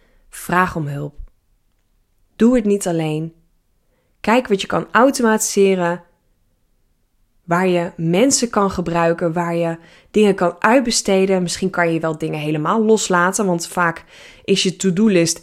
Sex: female